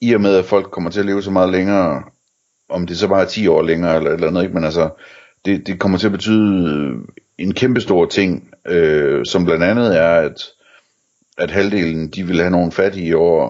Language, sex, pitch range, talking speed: Danish, male, 80-100 Hz, 220 wpm